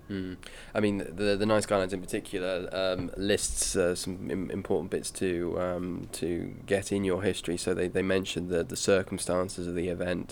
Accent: British